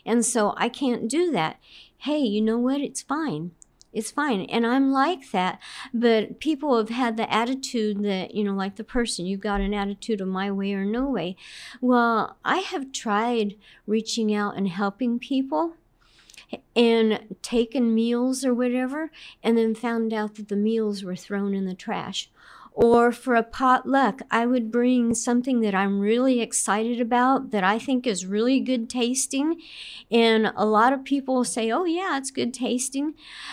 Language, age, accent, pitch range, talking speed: English, 50-69, American, 210-255 Hz, 175 wpm